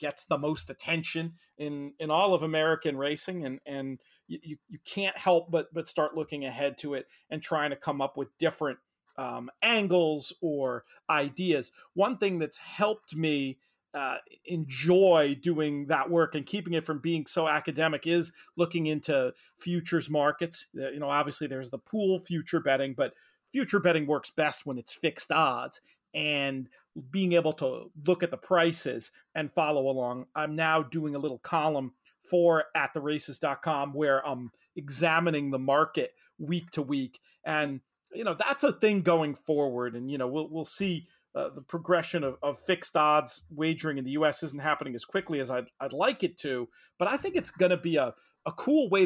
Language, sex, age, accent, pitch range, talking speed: English, male, 40-59, American, 145-175 Hz, 180 wpm